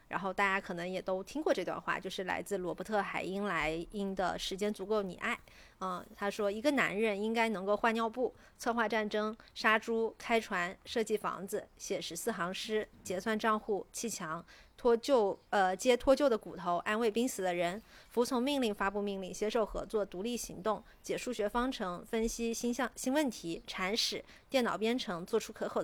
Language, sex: Chinese, female